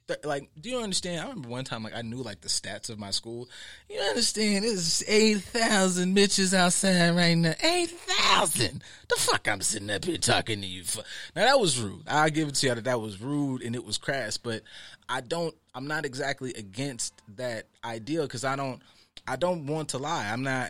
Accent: American